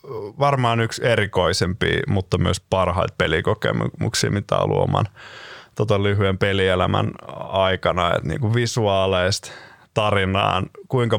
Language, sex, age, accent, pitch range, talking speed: Finnish, male, 20-39, native, 95-120 Hz, 105 wpm